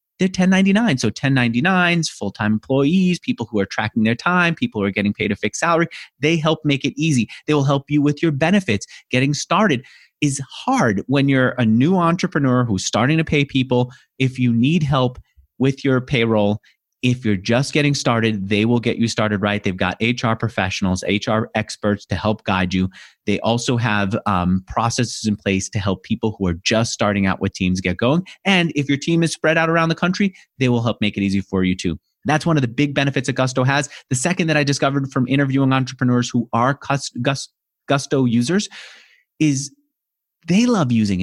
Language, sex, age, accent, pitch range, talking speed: English, male, 30-49, American, 110-160 Hz, 200 wpm